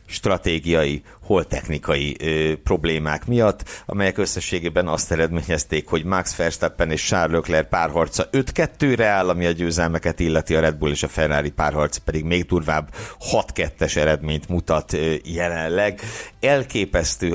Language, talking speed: Hungarian, 125 wpm